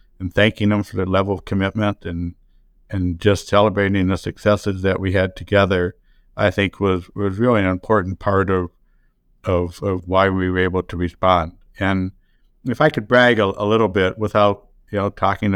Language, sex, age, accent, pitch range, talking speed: English, male, 60-79, American, 90-100 Hz, 185 wpm